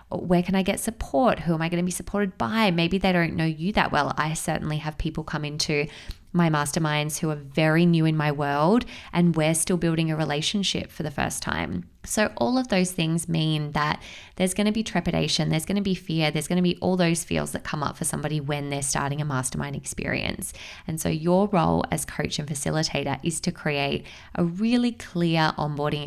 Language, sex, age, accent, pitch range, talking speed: English, female, 20-39, Australian, 145-180 Hz, 220 wpm